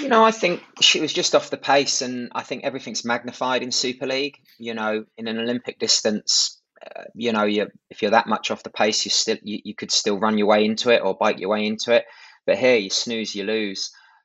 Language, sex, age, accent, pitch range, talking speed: English, male, 20-39, British, 110-130 Hz, 245 wpm